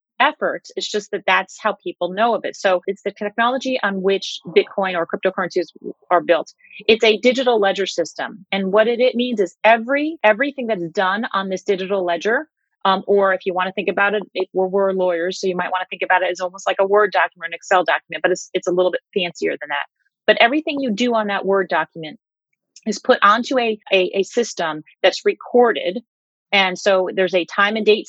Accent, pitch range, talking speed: American, 185-230 Hz, 220 wpm